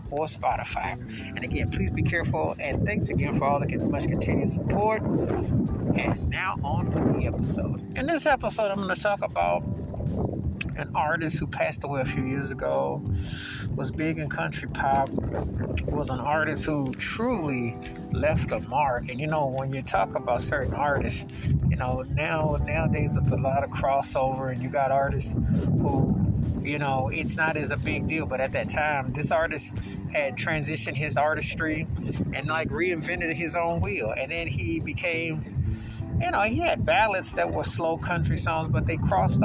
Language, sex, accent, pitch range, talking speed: English, male, American, 125-155 Hz, 180 wpm